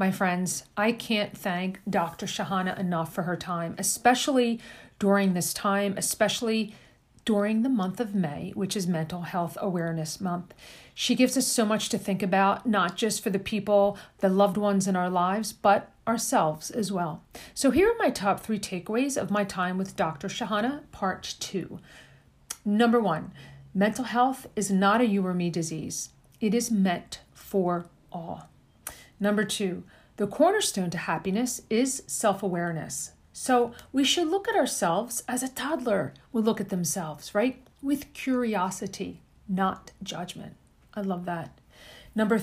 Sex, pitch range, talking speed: female, 190-240 Hz, 155 wpm